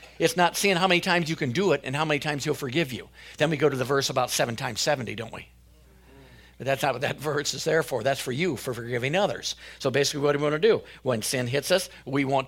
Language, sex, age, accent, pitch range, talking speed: English, male, 50-69, American, 125-155 Hz, 280 wpm